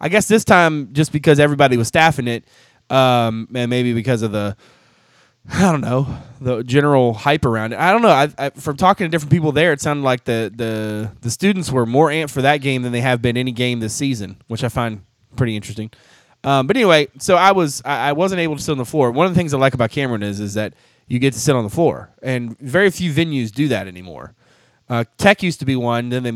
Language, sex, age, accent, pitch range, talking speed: English, male, 20-39, American, 115-150 Hz, 250 wpm